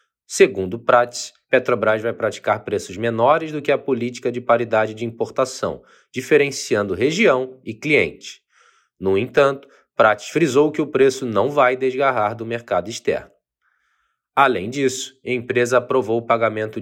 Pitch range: 115-140 Hz